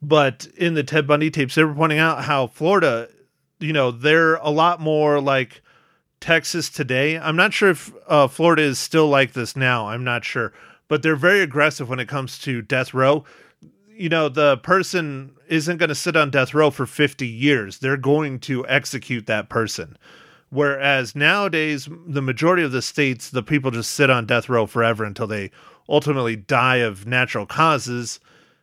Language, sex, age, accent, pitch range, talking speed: English, male, 30-49, American, 125-150 Hz, 180 wpm